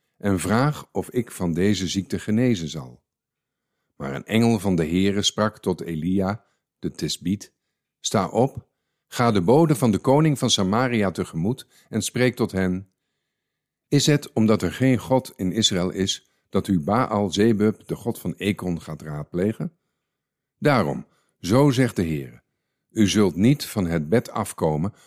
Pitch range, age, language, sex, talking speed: 90-115 Hz, 50-69, Dutch, male, 160 wpm